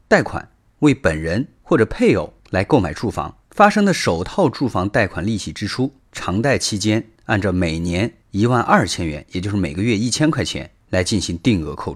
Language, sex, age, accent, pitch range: Chinese, male, 30-49, native, 95-130 Hz